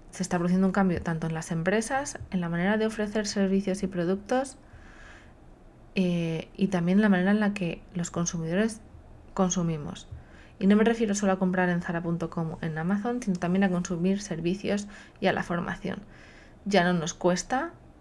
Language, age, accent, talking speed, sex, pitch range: Spanish, 20-39, Spanish, 180 wpm, female, 175-205 Hz